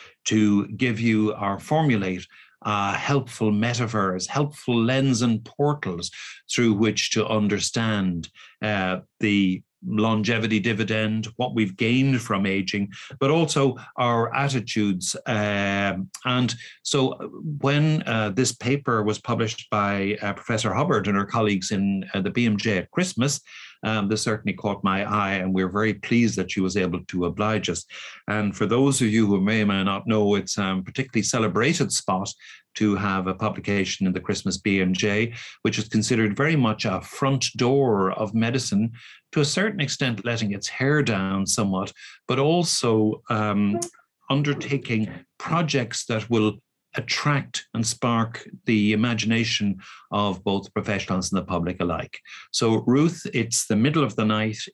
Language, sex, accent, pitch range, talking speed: English, male, Irish, 100-120 Hz, 150 wpm